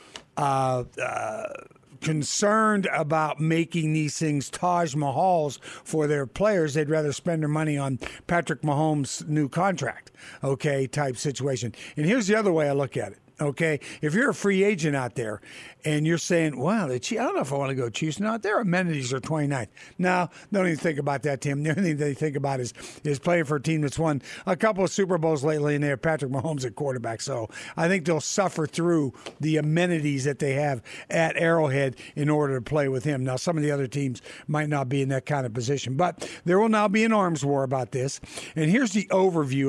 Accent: American